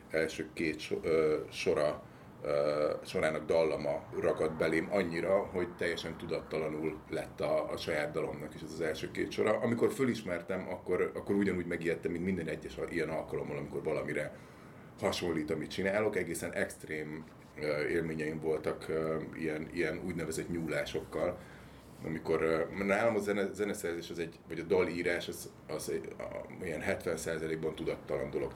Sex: male